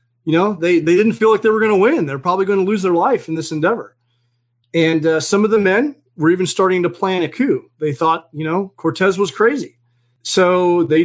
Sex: male